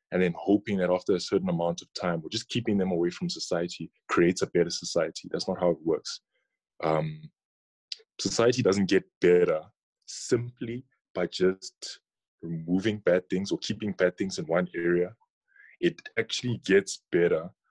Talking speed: 165 wpm